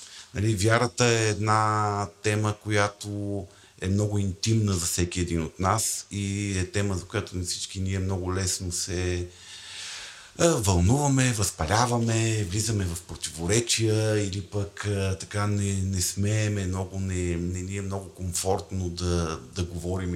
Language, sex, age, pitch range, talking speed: Bulgarian, male, 50-69, 90-120 Hz, 130 wpm